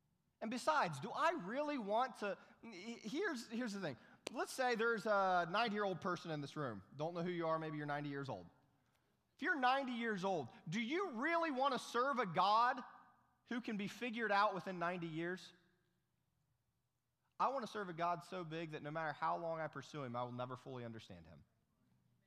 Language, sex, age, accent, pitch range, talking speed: English, male, 30-49, American, 125-180 Hz, 195 wpm